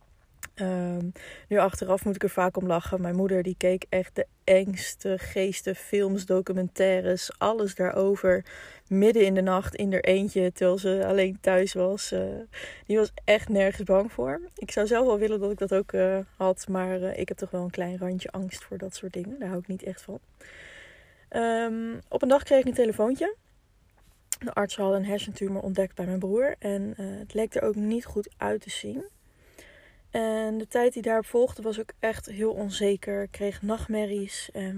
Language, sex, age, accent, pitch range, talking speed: Dutch, female, 20-39, Dutch, 190-220 Hz, 195 wpm